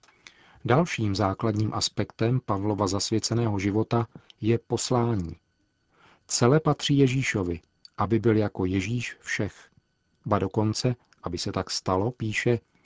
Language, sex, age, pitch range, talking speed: Czech, male, 40-59, 105-130 Hz, 105 wpm